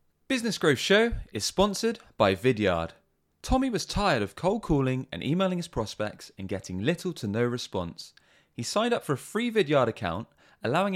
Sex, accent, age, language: male, British, 20-39, English